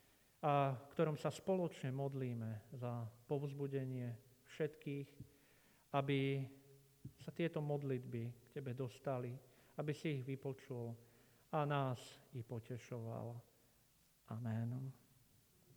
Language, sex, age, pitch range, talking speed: Slovak, male, 50-69, 125-145 Hz, 90 wpm